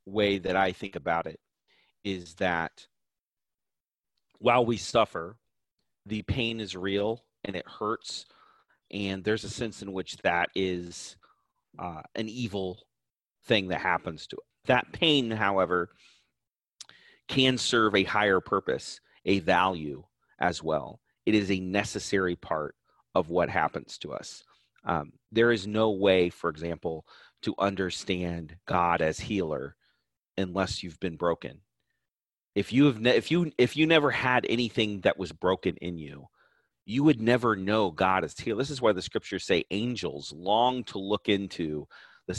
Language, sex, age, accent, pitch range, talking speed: English, male, 30-49, American, 90-115 Hz, 155 wpm